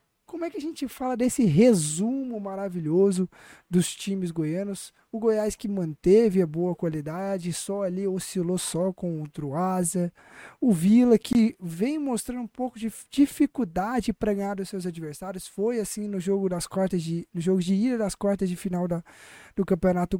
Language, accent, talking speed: Portuguese, Brazilian, 165 wpm